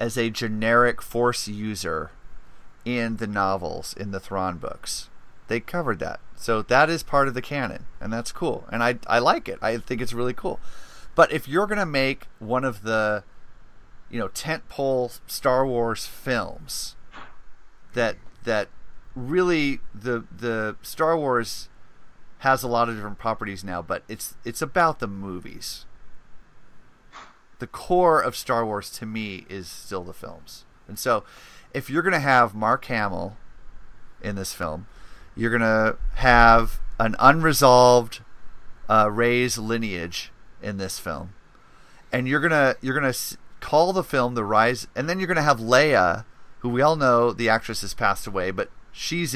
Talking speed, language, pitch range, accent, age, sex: 160 wpm, English, 105-130 Hz, American, 30-49, male